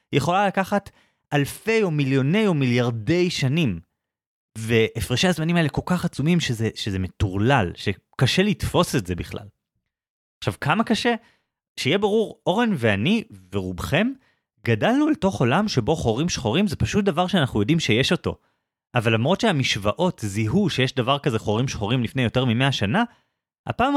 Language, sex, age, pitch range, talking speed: Hebrew, male, 30-49, 110-180 Hz, 145 wpm